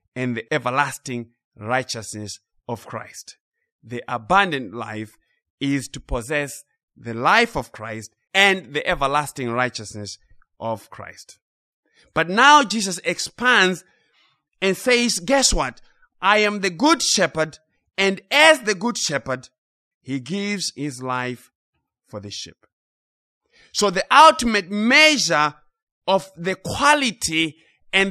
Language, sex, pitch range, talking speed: English, male, 120-185 Hz, 115 wpm